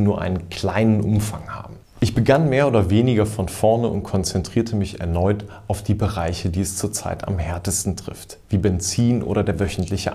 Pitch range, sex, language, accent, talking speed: 100-125 Hz, male, German, German, 175 wpm